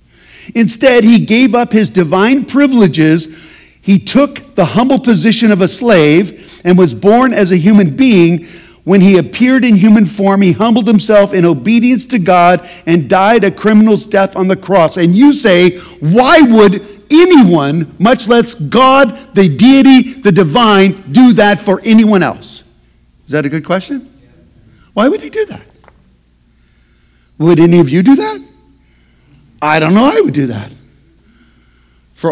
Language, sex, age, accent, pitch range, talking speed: English, male, 50-69, American, 170-230 Hz, 160 wpm